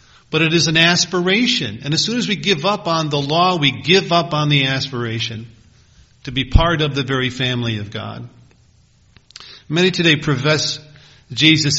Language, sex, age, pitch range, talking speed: English, male, 50-69, 120-150 Hz, 175 wpm